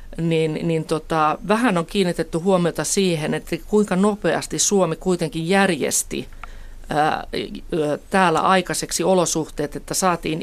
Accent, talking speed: native, 105 wpm